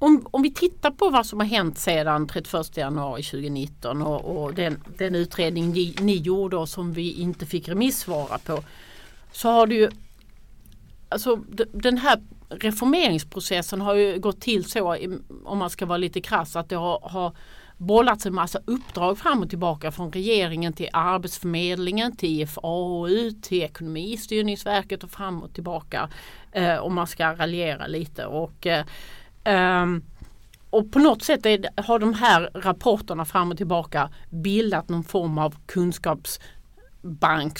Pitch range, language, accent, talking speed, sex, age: 160-205 Hz, Swedish, native, 155 wpm, female, 40-59